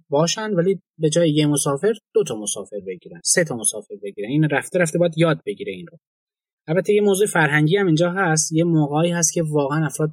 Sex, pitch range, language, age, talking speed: male, 145-190 Hz, Persian, 20-39, 200 wpm